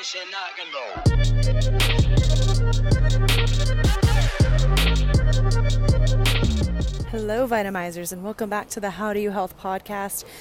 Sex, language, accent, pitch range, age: female, English, American, 160-190 Hz, 20-39